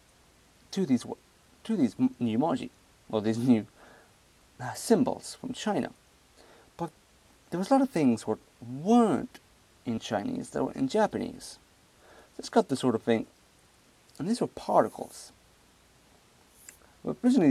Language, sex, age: Japanese, male, 30-49